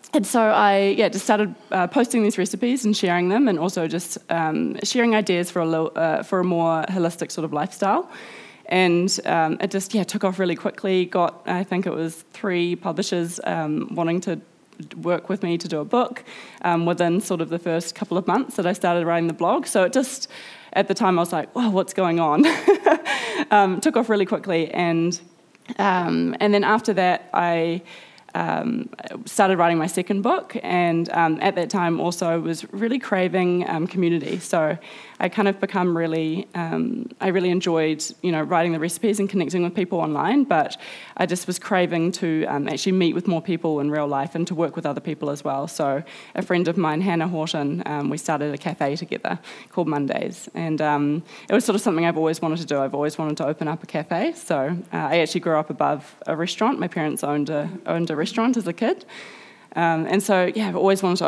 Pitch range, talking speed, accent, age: 165-195 Hz, 215 wpm, Australian, 20-39